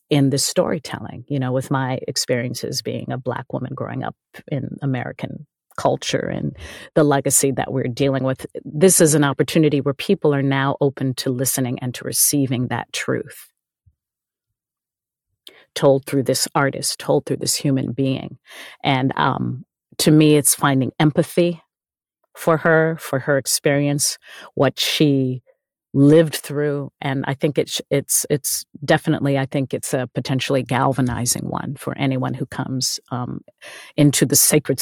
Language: English